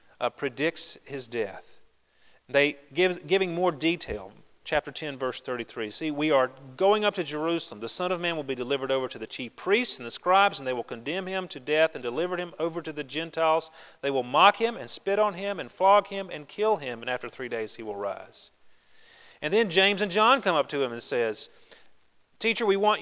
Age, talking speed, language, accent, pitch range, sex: 40-59, 220 wpm, English, American, 140-200 Hz, male